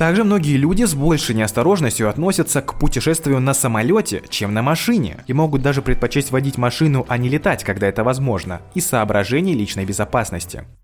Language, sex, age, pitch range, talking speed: Russian, male, 20-39, 105-150 Hz, 165 wpm